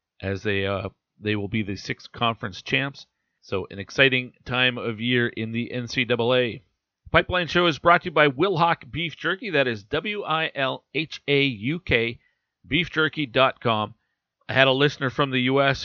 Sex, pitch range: male, 115-150 Hz